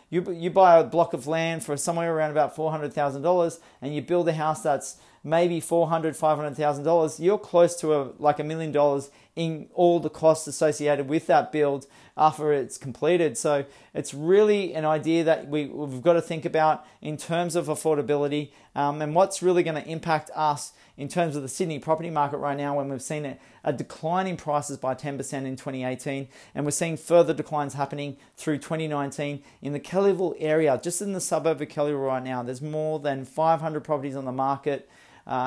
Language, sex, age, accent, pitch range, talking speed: English, male, 40-59, Australian, 140-160 Hz, 205 wpm